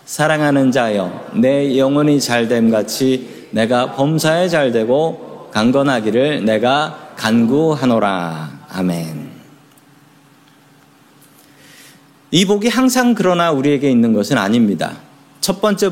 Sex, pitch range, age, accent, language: male, 140-195 Hz, 40-59, native, Korean